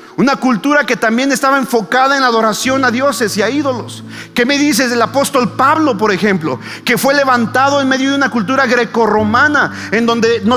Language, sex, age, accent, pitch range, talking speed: Spanish, male, 40-59, Mexican, 205-270 Hz, 195 wpm